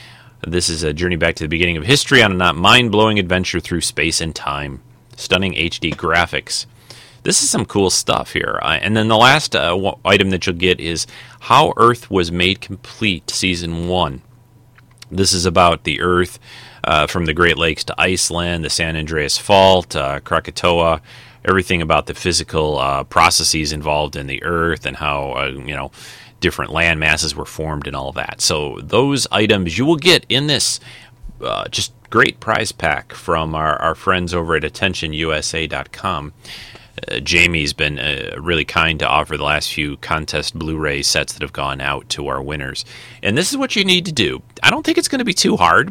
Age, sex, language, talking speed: 30-49, male, English, 190 wpm